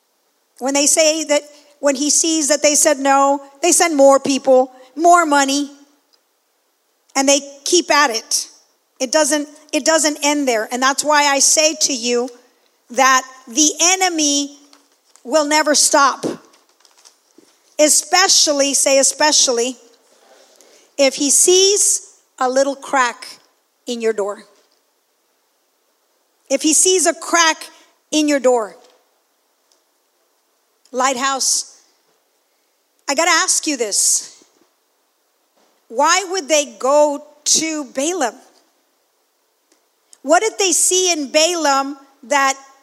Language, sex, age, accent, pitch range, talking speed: English, female, 50-69, American, 270-330 Hz, 115 wpm